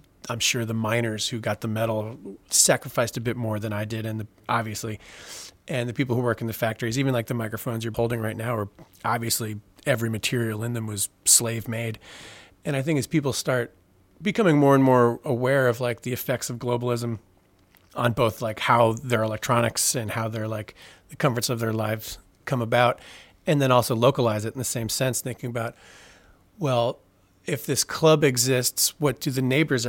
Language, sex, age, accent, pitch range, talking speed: English, male, 40-59, American, 110-125 Hz, 195 wpm